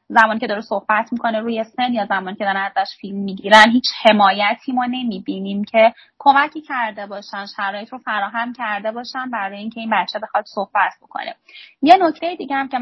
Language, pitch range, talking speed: Persian, 210-265 Hz, 185 wpm